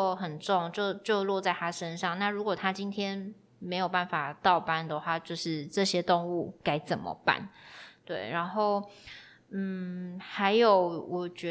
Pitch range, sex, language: 175-210 Hz, female, Chinese